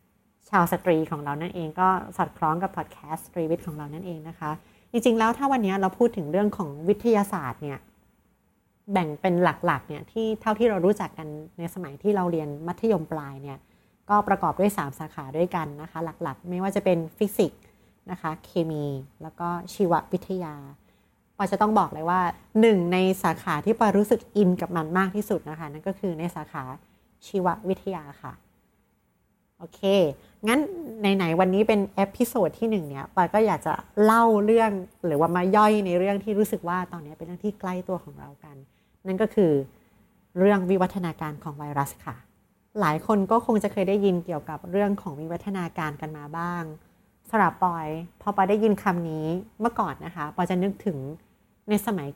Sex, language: female, Thai